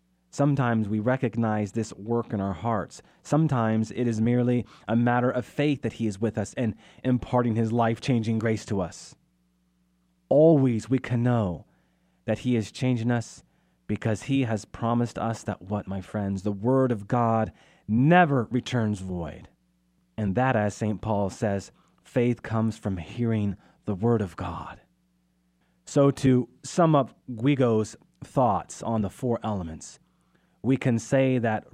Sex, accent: male, American